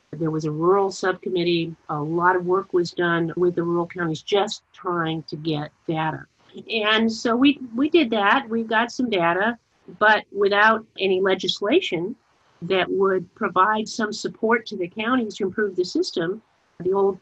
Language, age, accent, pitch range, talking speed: English, 50-69, American, 165-200 Hz, 165 wpm